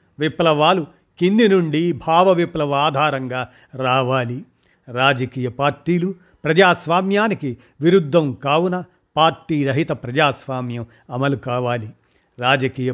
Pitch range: 130-165 Hz